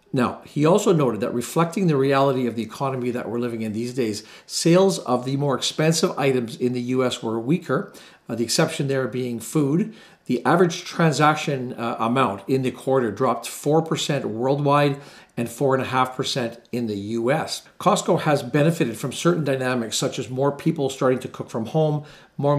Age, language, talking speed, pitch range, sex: 50-69, English, 175 wpm, 120-150 Hz, male